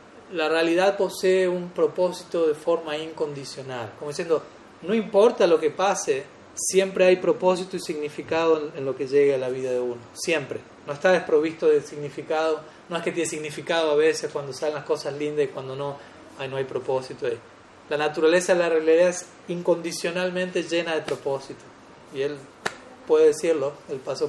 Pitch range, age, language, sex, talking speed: 150-190 Hz, 30-49, Spanish, male, 175 wpm